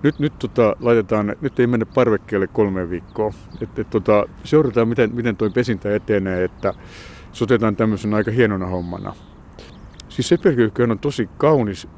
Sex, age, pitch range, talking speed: male, 60-79, 100-120 Hz, 150 wpm